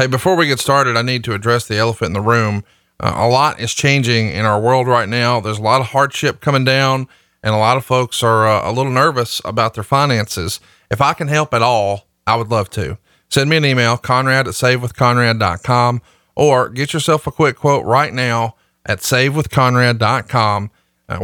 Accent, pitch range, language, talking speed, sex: American, 115-140 Hz, English, 210 wpm, male